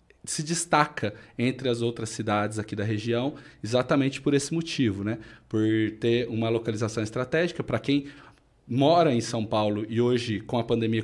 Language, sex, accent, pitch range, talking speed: Portuguese, male, Brazilian, 110-140 Hz, 165 wpm